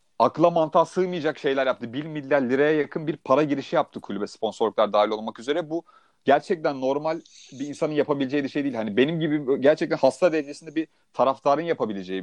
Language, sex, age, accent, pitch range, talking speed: Turkish, male, 30-49, native, 135-180 Hz, 175 wpm